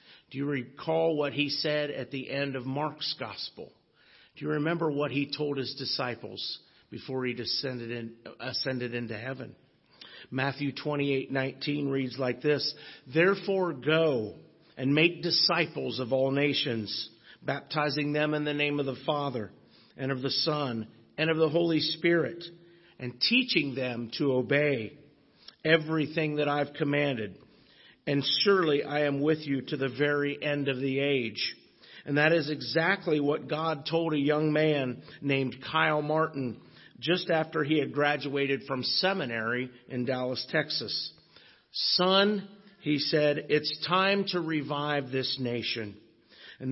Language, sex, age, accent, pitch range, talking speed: English, male, 50-69, American, 130-160 Hz, 145 wpm